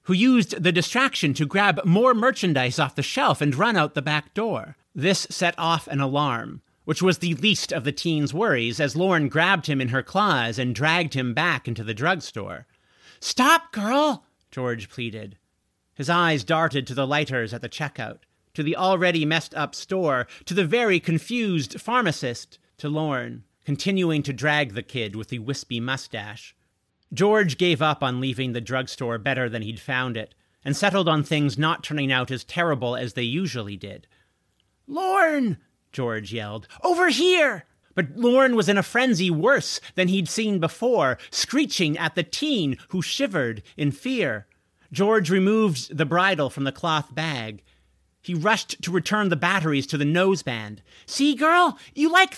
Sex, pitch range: male, 130-195 Hz